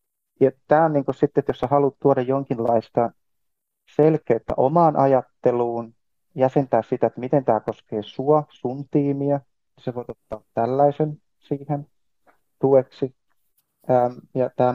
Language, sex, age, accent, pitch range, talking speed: Finnish, male, 30-49, native, 110-130 Hz, 120 wpm